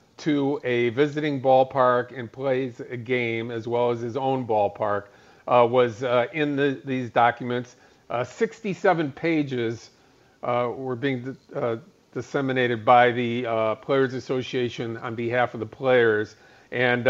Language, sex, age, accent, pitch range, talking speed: English, male, 50-69, American, 120-145 Hz, 135 wpm